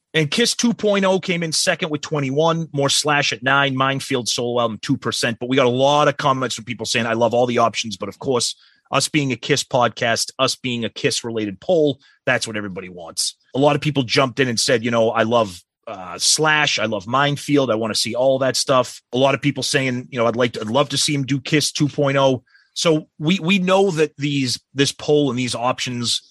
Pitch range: 115-150 Hz